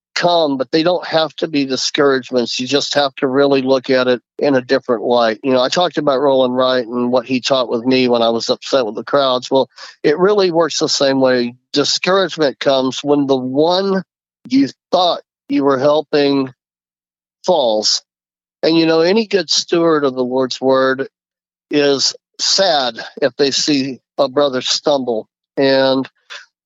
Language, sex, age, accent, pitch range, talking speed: English, male, 40-59, American, 125-150 Hz, 175 wpm